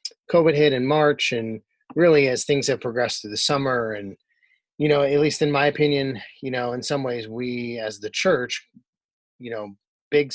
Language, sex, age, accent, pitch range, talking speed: English, male, 30-49, American, 115-150 Hz, 190 wpm